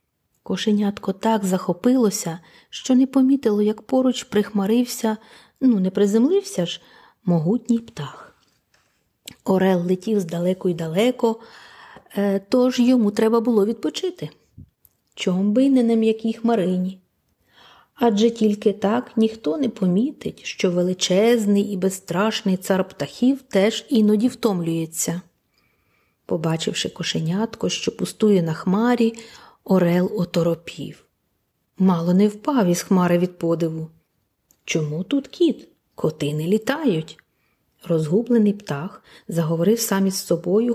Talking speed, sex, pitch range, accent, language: 110 wpm, female, 175-225 Hz, native, Ukrainian